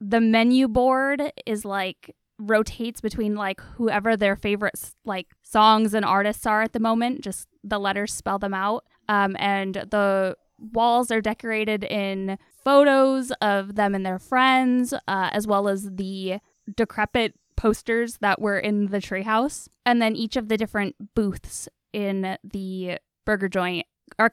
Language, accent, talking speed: English, American, 155 wpm